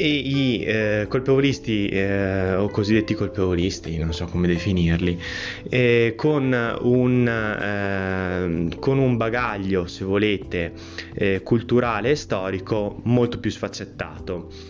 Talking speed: 115 wpm